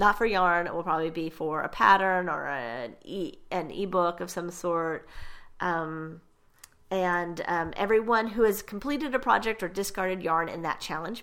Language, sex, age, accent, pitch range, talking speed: English, female, 30-49, American, 165-205 Hz, 175 wpm